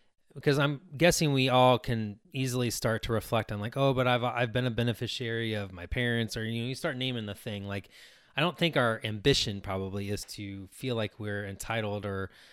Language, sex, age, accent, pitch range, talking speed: English, male, 20-39, American, 105-125 Hz, 210 wpm